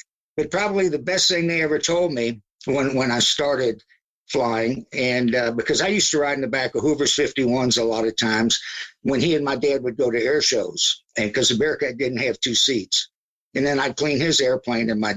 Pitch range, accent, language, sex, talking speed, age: 120-160 Hz, American, English, male, 220 wpm, 60-79